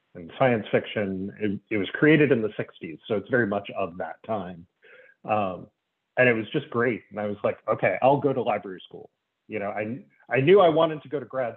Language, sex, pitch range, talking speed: English, male, 100-130 Hz, 230 wpm